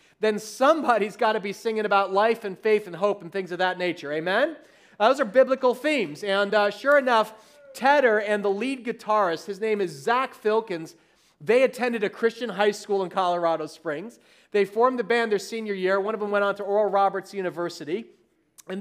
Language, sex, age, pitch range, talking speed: English, male, 40-59, 190-235 Hz, 200 wpm